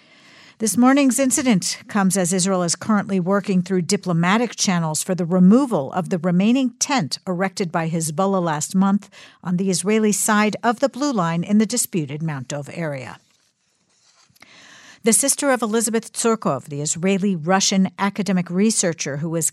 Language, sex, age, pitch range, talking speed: English, female, 50-69, 170-215 Hz, 150 wpm